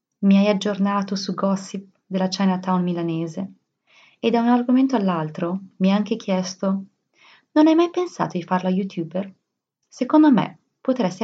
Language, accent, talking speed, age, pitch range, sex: Italian, native, 145 wpm, 30-49, 180-210 Hz, female